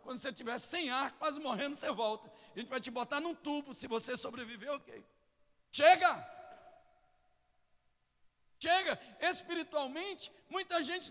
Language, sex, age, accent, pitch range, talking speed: Portuguese, male, 60-79, Brazilian, 285-350 Hz, 135 wpm